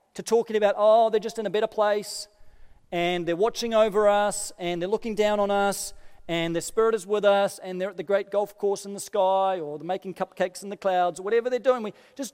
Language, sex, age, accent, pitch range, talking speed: English, male, 40-59, Australian, 205-285 Hz, 245 wpm